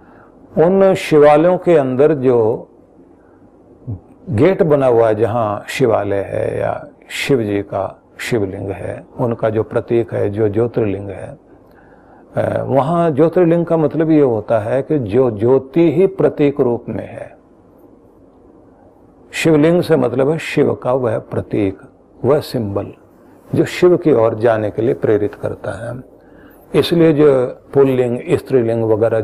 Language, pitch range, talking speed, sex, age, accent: Hindi, 115-155 Hz, 135 wpm, male, 40-59, native